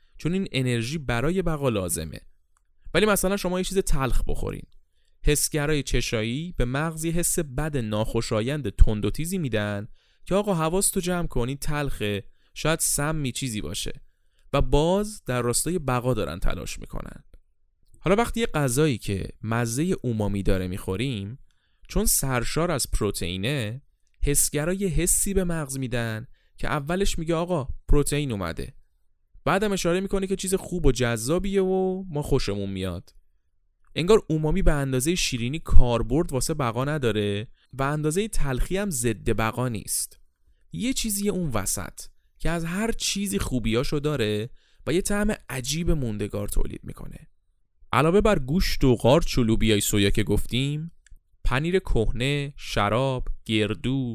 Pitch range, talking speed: 110-165 Hz, 135 wpm